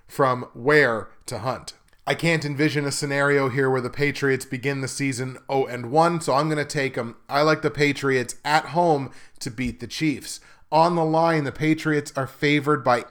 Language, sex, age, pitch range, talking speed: English, male, 30-49, 125-155 Hz, 190 wpm